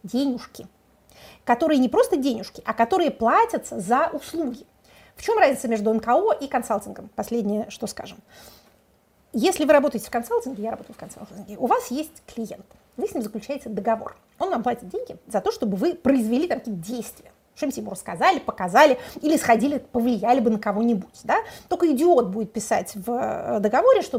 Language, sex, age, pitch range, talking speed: Russian, female, 30-49, 230-330 Hz, 165 wpm